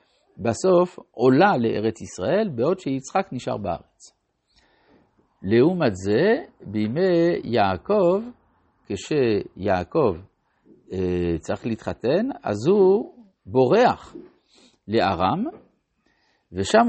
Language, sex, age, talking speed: Hebrew, male, 60-79, 70 wpm